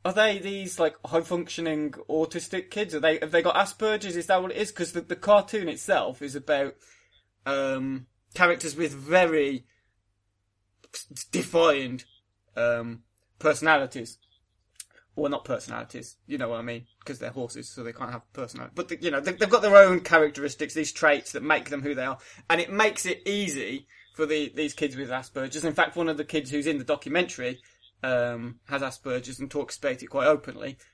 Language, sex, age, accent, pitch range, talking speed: English, male, 20-39, British, 135-170 Hz, 185 wpm